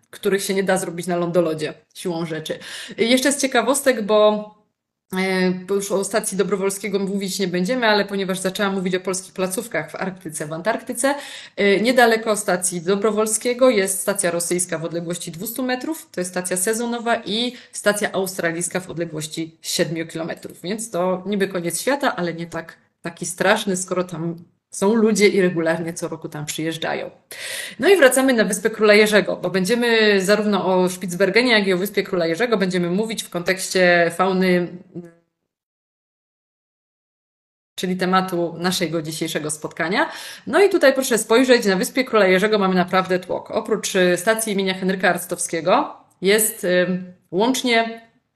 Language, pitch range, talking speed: Polish, 175-220 Hz, 145 wpm